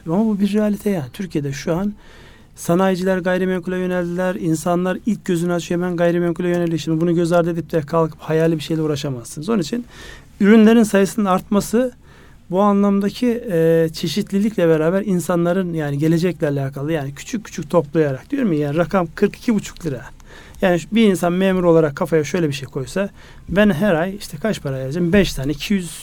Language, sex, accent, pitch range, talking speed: Turkish, male, native, 155-190 Hz, 170 wpm